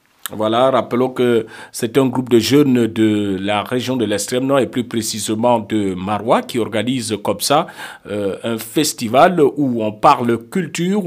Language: English